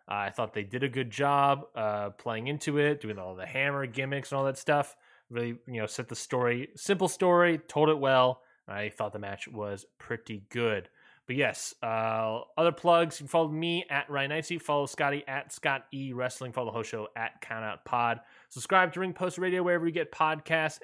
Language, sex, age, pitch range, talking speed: English, male, 20-39, 125-175 Hz, 205 wpm